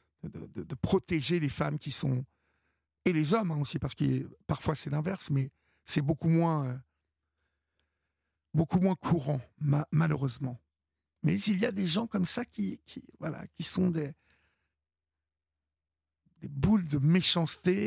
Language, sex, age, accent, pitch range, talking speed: French, male, 60-79, French, 130-175 Hz, 150 wpm